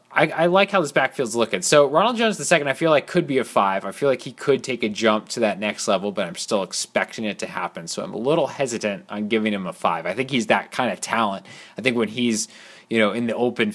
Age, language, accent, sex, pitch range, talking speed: 20-39, English, American, male, 110-160 Hz, 275 wpm